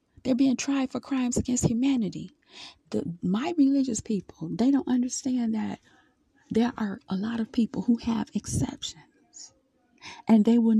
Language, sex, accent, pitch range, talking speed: English, female, American, 225-265 Hz, 145 wpm